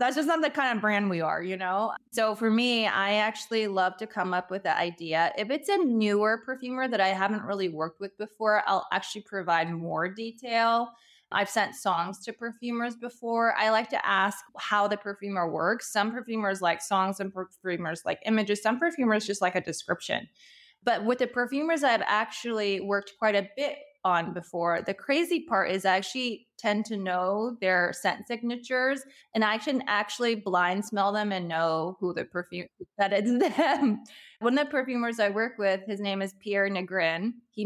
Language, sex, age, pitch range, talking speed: English, female, 20-39, 190-235 Hz, 190 wpm